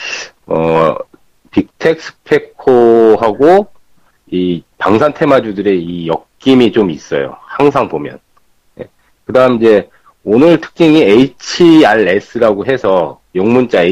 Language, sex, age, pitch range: Korean, male, 40-59, 95-150 Hz